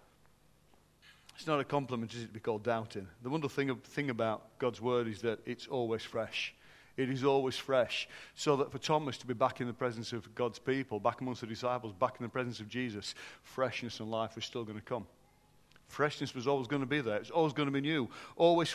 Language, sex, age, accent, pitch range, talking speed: English, male, 40-59, British, 115-150 Hz, 230 wpm